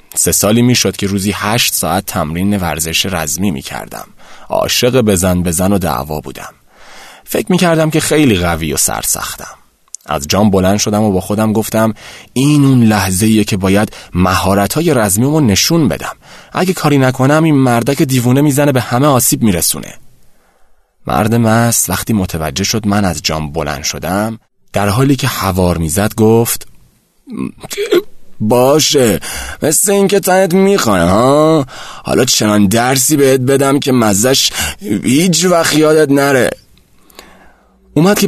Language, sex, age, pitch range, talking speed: Persian, male, 30-49, 90-135 Hz, 135 wpm